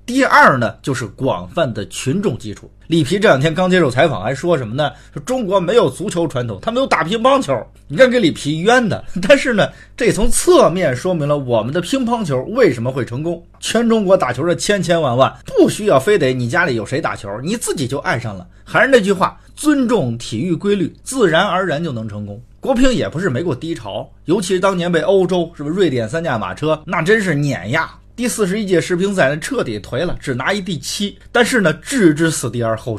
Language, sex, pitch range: Chinese, male, 130-200 Hz